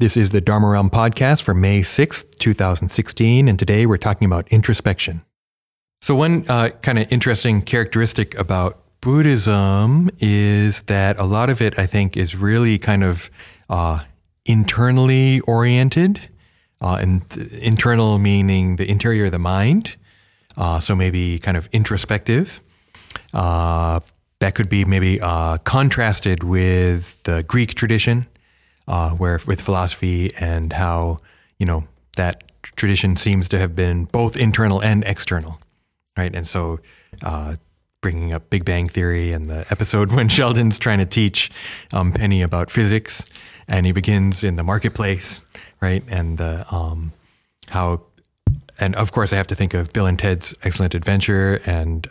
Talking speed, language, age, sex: 150 wpm, English, 30-49, male